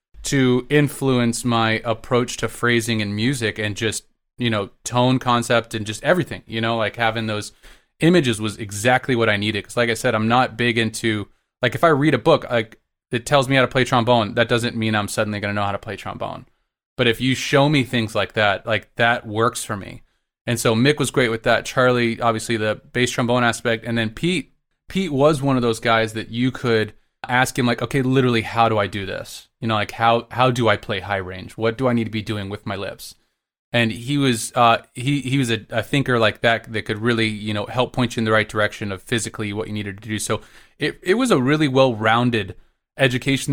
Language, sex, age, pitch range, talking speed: English, male, 20-39, 110-130 Hz, 235 wpm